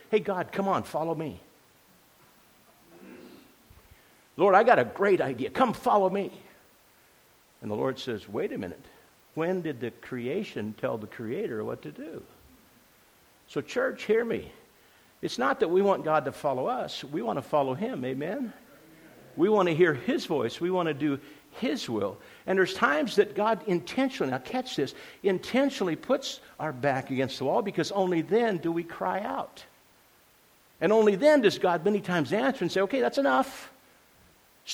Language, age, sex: English, 60-79, male